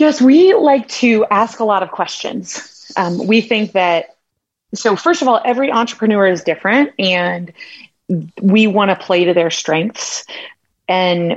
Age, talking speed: 30-49, 160 wpm